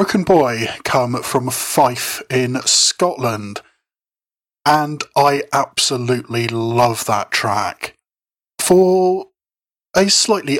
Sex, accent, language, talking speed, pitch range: male, British, English, 90 wpm, 120-150 Hz